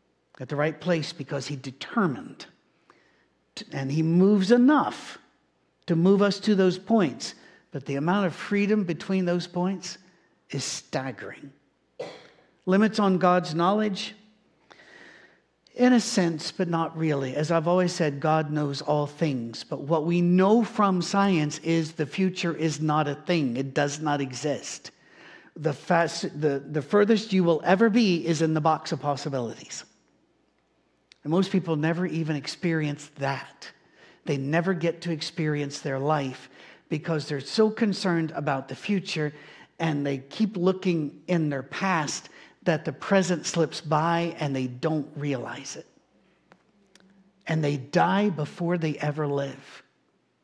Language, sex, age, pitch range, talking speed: English, male, 50-69, 150-190 Hz, 145 wpm